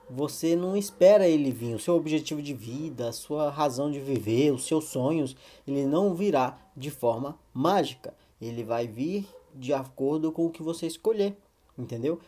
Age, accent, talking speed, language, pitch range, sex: 20-39, Brazilian, 170 wpm, Portuguese, 130-170 Hz, male